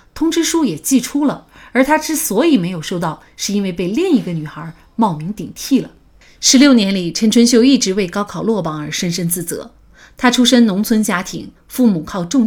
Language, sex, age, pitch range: Chinese, female, 30-49, 170-245 Hz